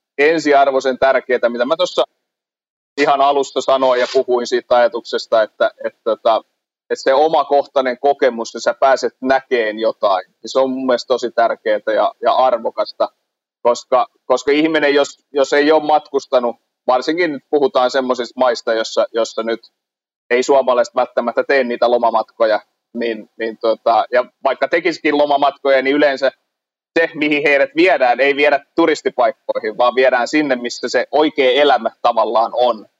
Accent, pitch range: native, 125-150 Hz